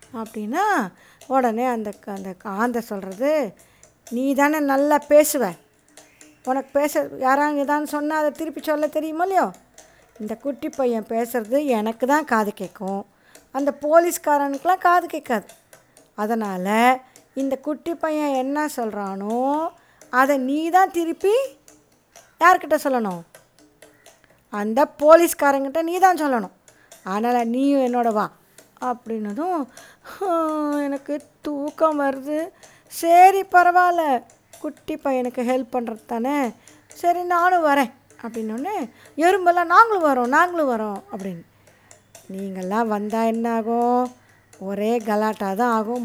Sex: female